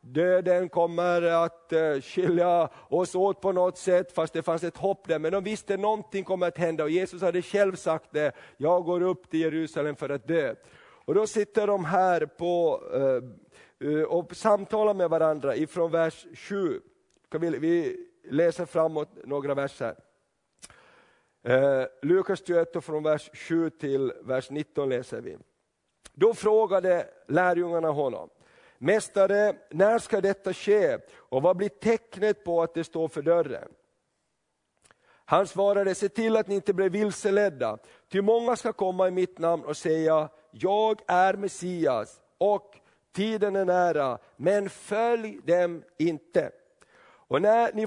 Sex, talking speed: male, 145 wpm